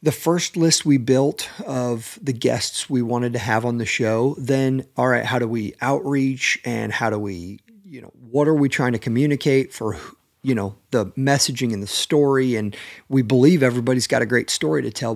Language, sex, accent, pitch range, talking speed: English, male, American, 120-150 Hz, 205 wpm